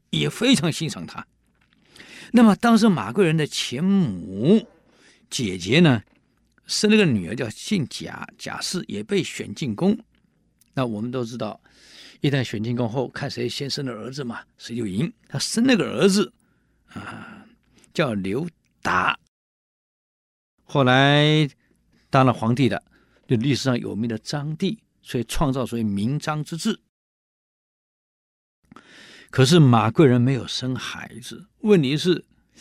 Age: 50-69